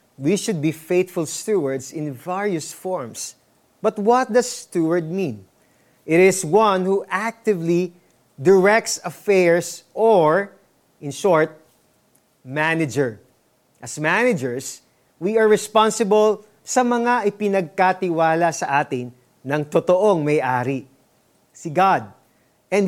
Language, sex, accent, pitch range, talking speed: Filipino, male, native, 160-215 Hz, 105 wpm